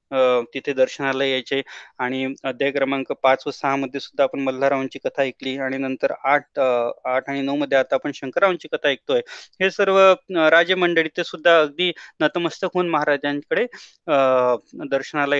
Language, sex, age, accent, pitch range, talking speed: Marathi, male, 20-39, native, 135-180 Hz, 145 wpm